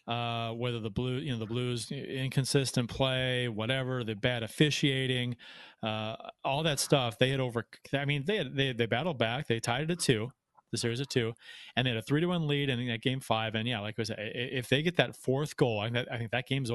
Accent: American